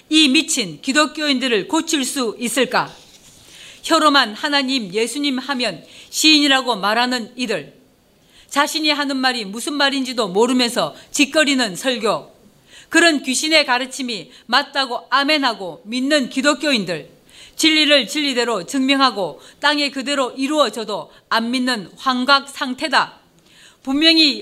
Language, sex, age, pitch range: Korean, female, 40-59, 240-295 Hz